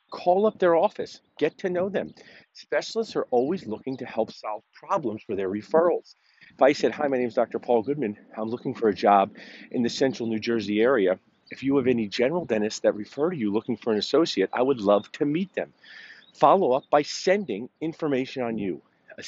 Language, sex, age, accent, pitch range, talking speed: English, male, 50-69, American, 110-155 Hz, 210 wpm